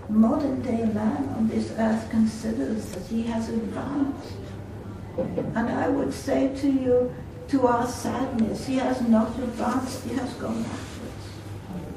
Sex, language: female, Swedish